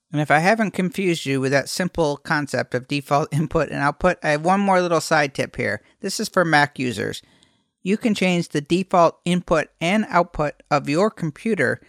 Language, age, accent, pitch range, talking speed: English, 50-69, American, 140-180 Hz, 195 wpm